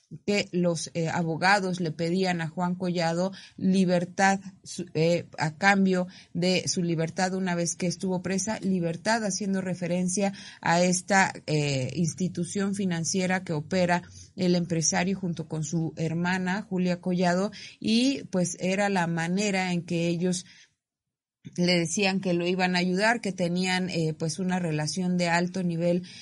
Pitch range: 170-195 Hz